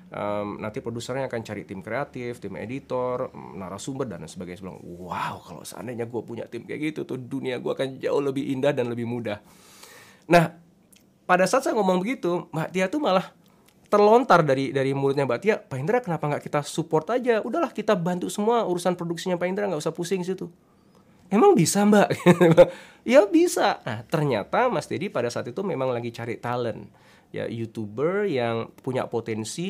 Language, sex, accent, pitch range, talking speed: Indonesian, male, native, 115-175 Hz, 175 wpm